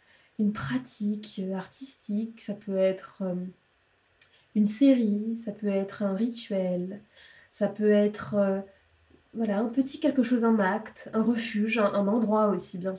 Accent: French